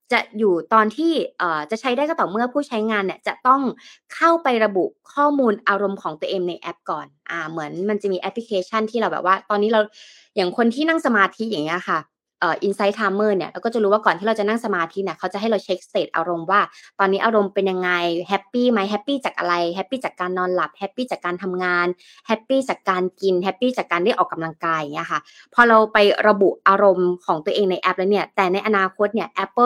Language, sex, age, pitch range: Thai, female, 20-39, 185-235 Hz